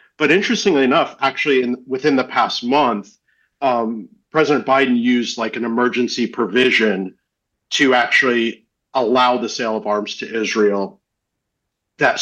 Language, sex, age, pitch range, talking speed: English, male, 50-69, 110-135 Hz, 130 wpm